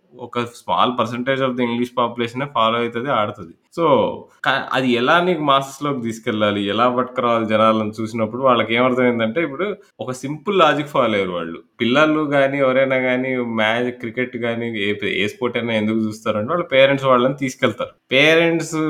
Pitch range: 120-150 Hz